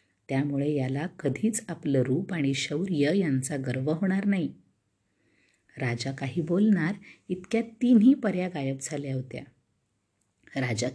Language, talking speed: Marathi, 115 wpm